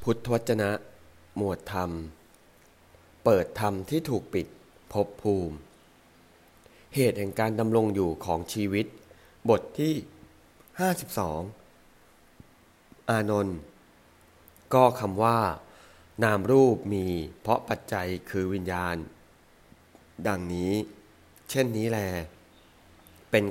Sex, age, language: male, 20-39, English